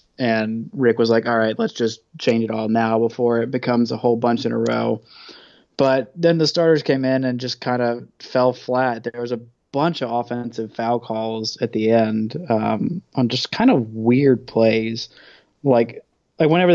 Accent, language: American, English